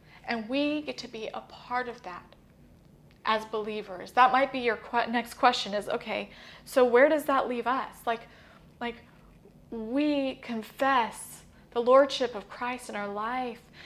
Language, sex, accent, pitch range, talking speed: English, female, American, 215-255 Hz, 160 wpm